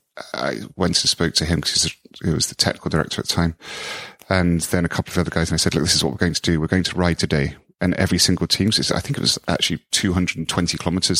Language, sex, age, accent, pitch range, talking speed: English, male, 30-49, British, 80-95 Hz, 270 wpm